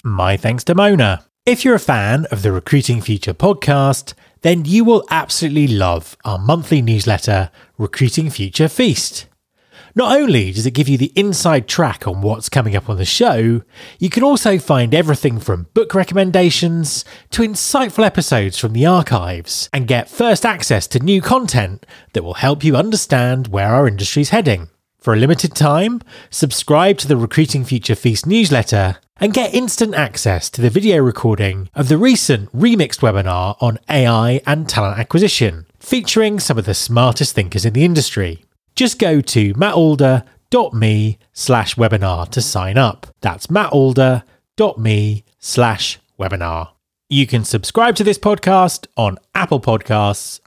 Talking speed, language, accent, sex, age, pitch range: 155 wpm, English, British, male, 30-49, 110-170 Hz